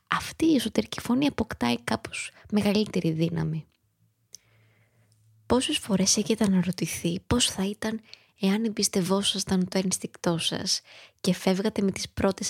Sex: female